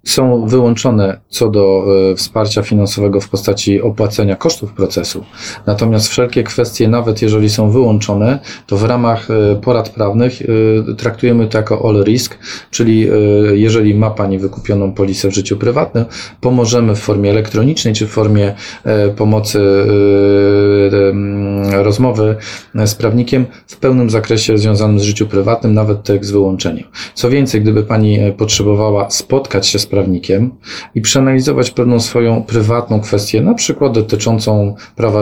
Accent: native